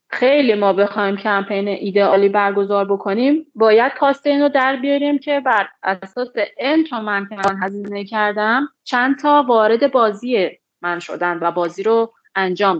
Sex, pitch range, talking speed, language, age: female, 205-270 Hz, 150 wpm, Persian, 30-49